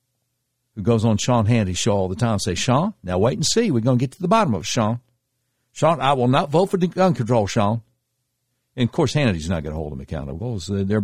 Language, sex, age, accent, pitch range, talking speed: English, male, 60-79, American, 100-125 Hz, 245 wpm